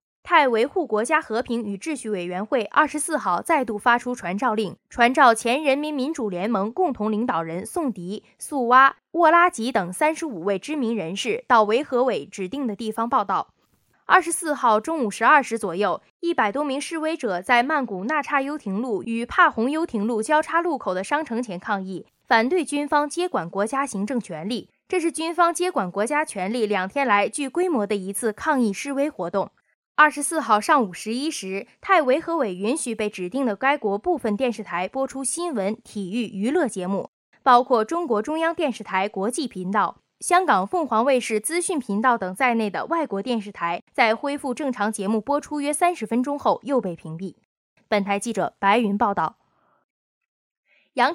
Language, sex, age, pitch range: Chinese, female, 20-39, 210-295 Hz